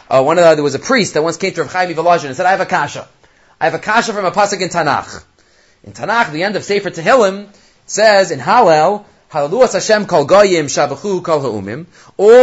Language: English